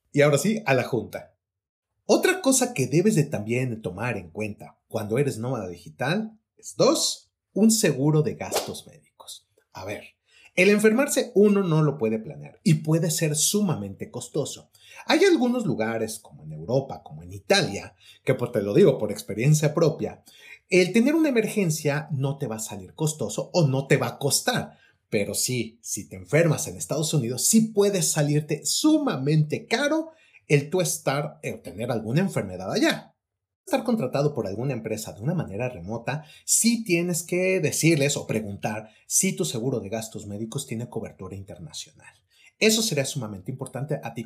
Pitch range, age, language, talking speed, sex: 110-185 Hz, 30-49, Spanish, 165 wpm, male